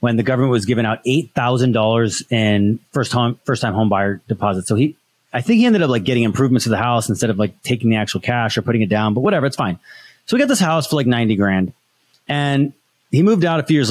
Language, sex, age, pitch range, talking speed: English, male, 30-49, 110-155 Hz, 260 wpm